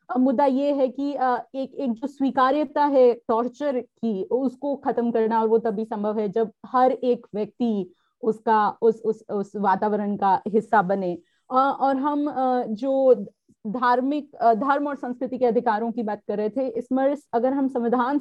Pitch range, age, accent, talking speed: 215-260 Hz, 30-49, native, 160 wpm